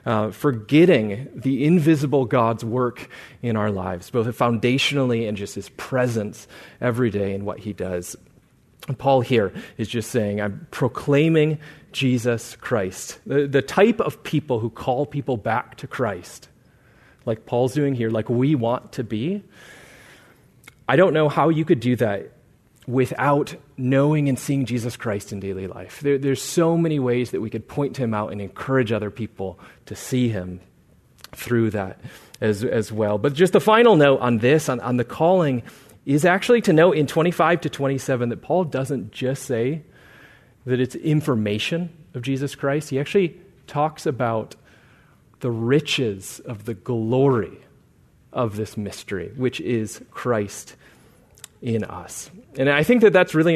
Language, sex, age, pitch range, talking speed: English, male, 30-49, 115-150 Hz, 160 wpm